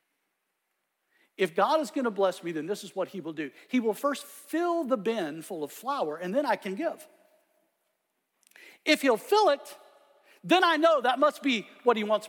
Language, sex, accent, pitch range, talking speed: English, male, American, 180-295 Hz, 200 wpm